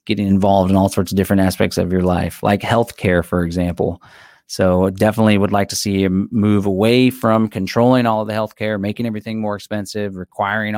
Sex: male